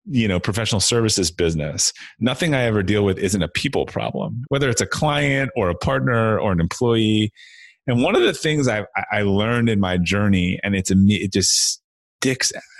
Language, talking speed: English, 190 wpm